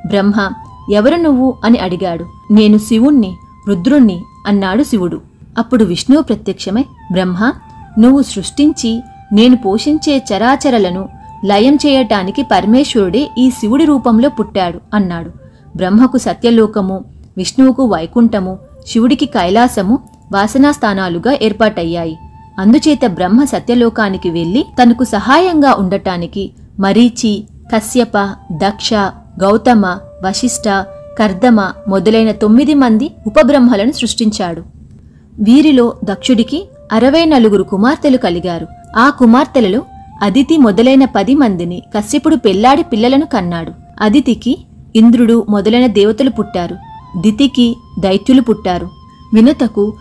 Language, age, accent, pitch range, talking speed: Telugu, 30-49, native, 195-255 Hz, 95 wpm